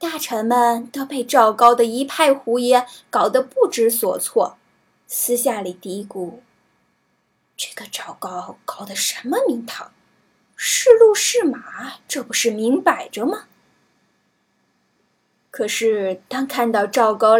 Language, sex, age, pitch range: Chinese, female, 10-29, 225-310 Hz